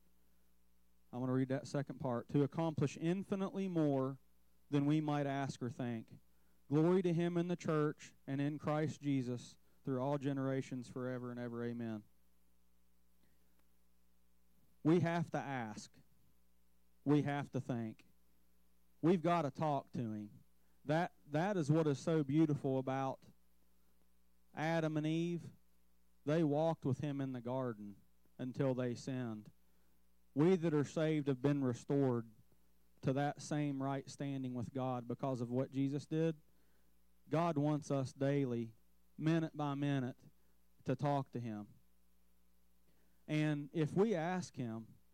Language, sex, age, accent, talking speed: English, male, 30-49, American, 140 wpm